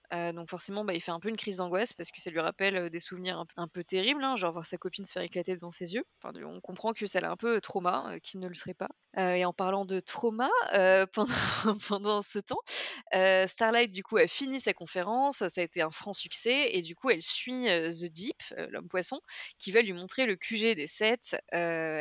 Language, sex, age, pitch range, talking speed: French, female, 20-39, 175-210 Hz, 260 wpm